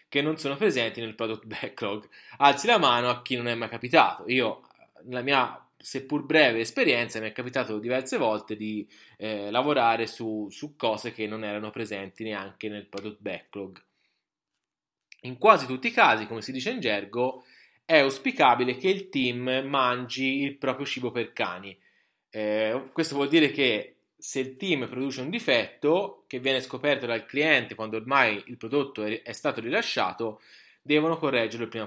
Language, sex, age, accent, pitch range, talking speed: Italian, male, 20-39, native, 110-140 Hz, 170 wpm